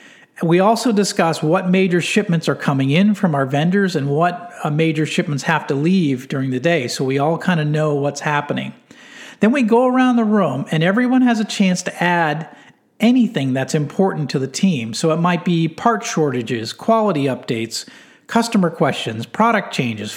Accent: American